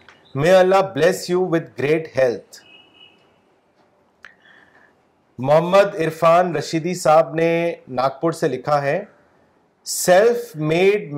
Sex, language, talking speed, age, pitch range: male, Urdu, 90 wpm, 40-59, 150-185 Hz